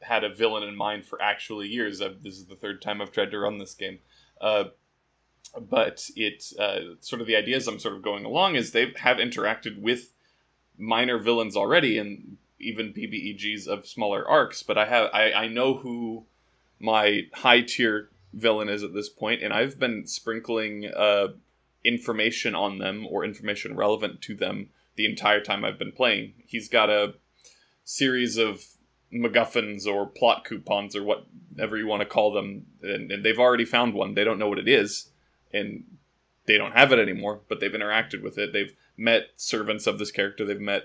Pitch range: 105-115 Hz